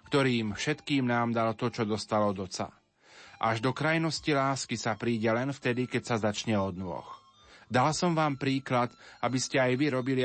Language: Slovak